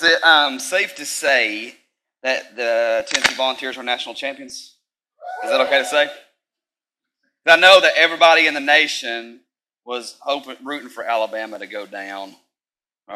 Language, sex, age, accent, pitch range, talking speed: English, male, 30-49, American, 115-140 Hz, 155 wpm